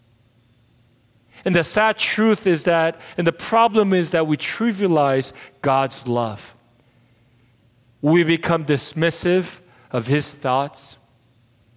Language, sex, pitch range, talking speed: English, male, 120-175 Hz, 105 wpm